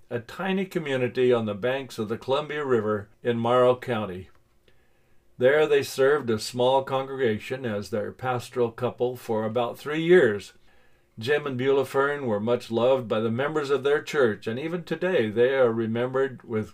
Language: English